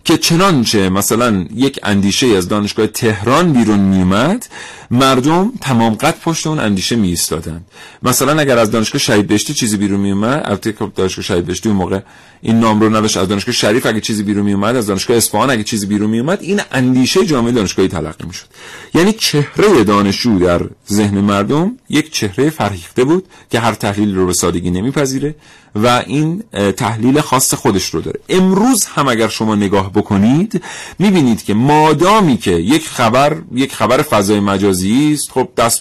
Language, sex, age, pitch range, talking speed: Persian, male, 40-59, 105-145 Hz, 170 wpm